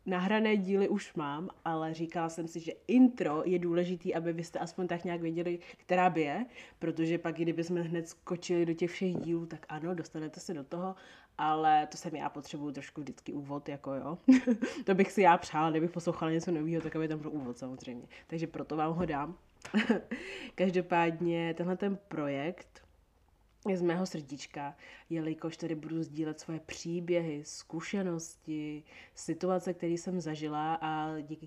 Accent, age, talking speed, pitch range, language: native, 20-39, 160 wpm, 150-175 Hz, Czech